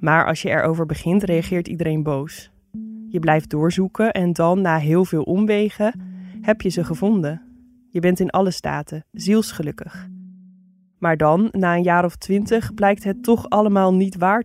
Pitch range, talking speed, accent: 180-215 Hz, 165 wpm, Dutch